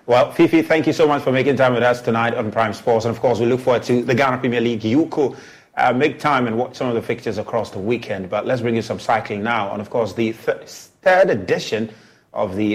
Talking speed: 265 wpm